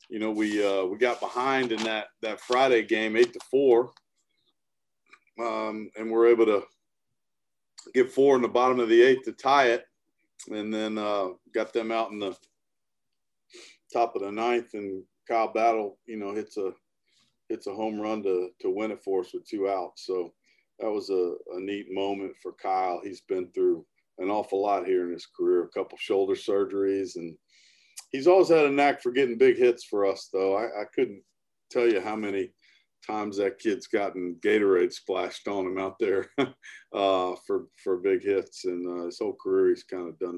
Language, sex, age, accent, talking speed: English, male, 40-59, American, 195 wpm